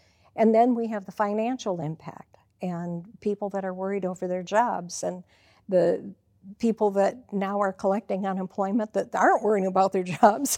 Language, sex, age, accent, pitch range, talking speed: English, female, 50-69, American, 180-210 Hz, 165 wpm